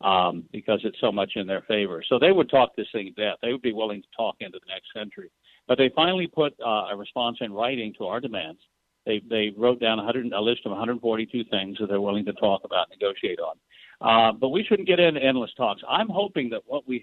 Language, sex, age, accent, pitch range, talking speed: English, male, 60-79, American, 110-145 Hz, 240 wpm